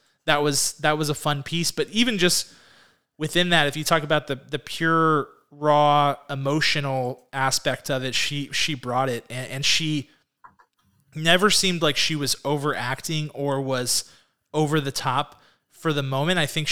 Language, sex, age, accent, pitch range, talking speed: English, male, 30-49, American, 130-155 Hz, 170 wpm